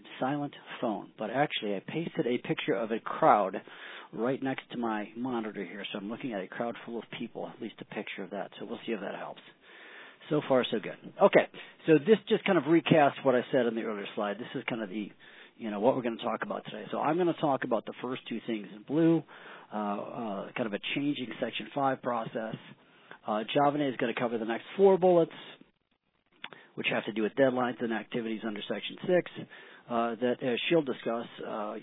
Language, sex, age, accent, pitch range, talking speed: English, male, 40-59, American, 115-150 Hz, 220 wpm